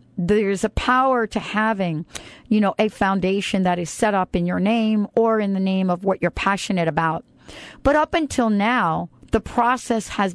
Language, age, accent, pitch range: English, 50-69, American, 180-230 Hz